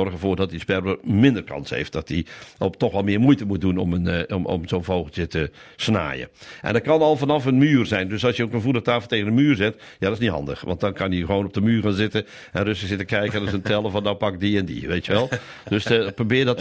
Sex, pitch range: male, 95-125 Hz